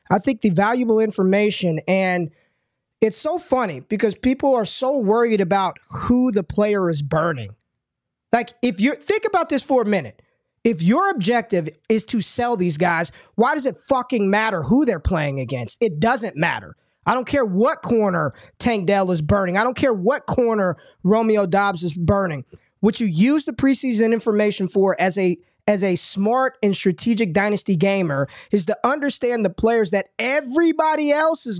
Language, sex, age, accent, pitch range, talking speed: English, male, 20-39, American, 190-245 Hz, 175 wpm